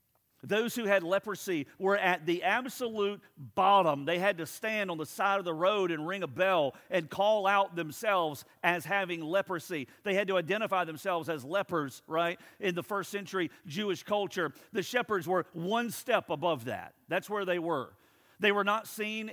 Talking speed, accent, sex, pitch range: 185 wpm, American, male, 165-195 Hz